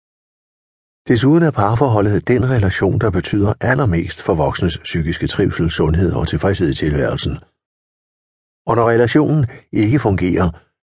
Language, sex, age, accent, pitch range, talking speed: Danish, male, 60-79, native, 80-120 Hz, 120 wpm